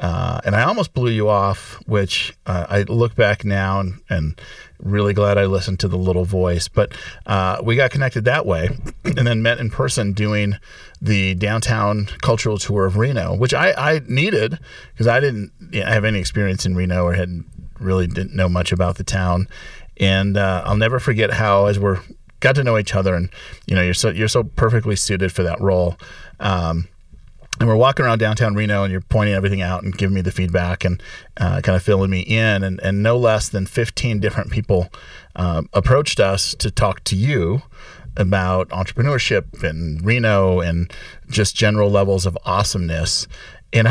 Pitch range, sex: 95-115 Hz, male